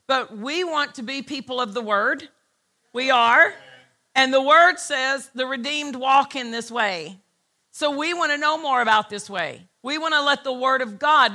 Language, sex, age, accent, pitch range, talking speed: English, female, 50-69, American, 230-275 Hz, 200 wpm